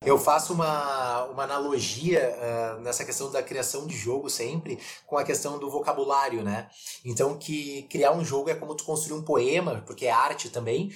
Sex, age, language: male, 20-39, Portuguese